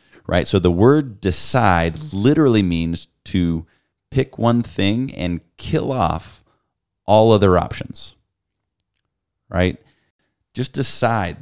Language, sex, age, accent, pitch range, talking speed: English, male, 30-49, American, 85-105 Hz, 105 wpm